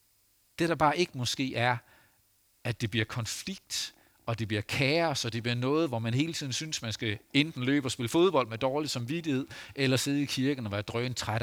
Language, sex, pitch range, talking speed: Danish, male, 110-140 Hz, 210 wpm